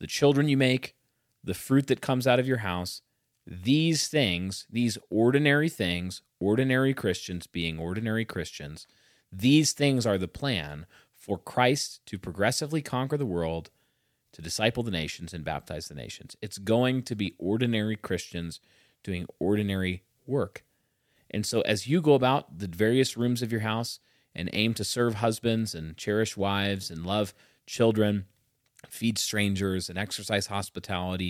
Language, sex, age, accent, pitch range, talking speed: English, male, 30-49, American, 95-125 Hz, 150 wpm